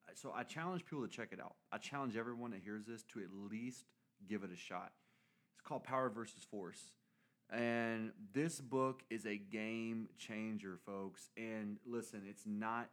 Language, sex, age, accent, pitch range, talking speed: English, male, 30-49, American, 95-115 Hz, 175 wpm